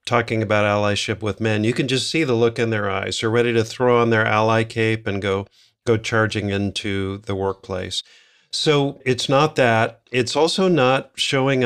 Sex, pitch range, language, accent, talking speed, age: male, 110-130 Hz, English, American, 190 wpm, 50-69